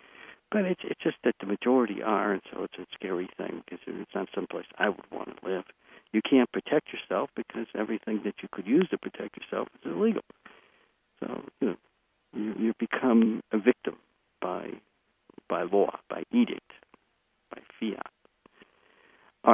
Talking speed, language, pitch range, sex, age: 165 wpm, English, 105-145 Hz, male, 60-79